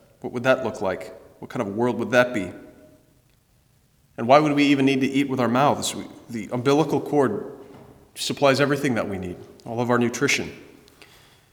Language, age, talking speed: English, 30-49, 180 wpm